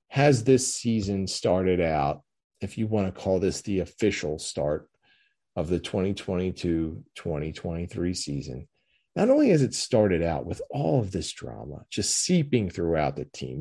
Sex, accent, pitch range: male, American, 85-120 Hz